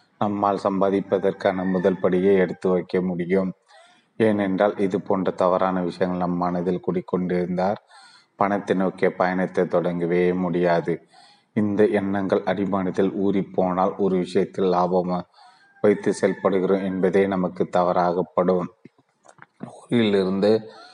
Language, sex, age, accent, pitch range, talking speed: Tamil, male, 30-49, native, 90-100 Hz, 95 wpm